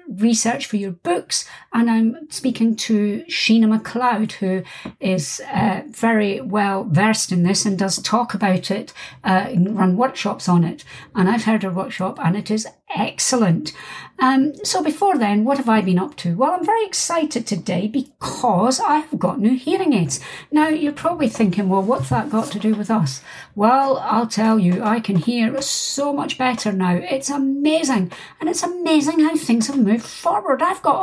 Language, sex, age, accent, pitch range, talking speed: English, female, 60-79, British, 200-270 Hz, 180 wpm